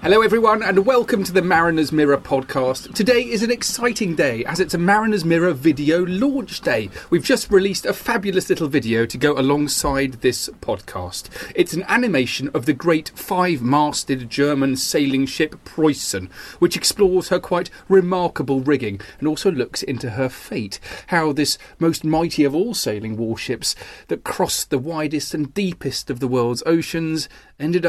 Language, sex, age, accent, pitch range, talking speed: English, male, 30-49, British, 130-190 Hz, 165 wpm